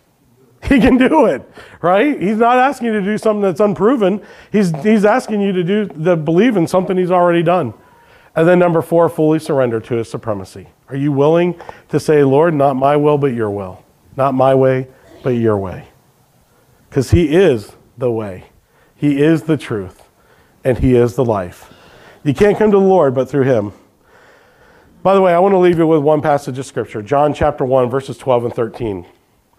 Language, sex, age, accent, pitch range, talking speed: English, male, 40-59, American, 135-195 Hz, 195 wpm